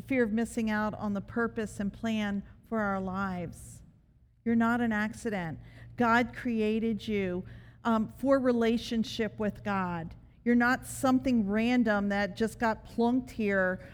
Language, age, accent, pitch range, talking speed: English, 50-69, American, 210-270 Hz, 140 wpm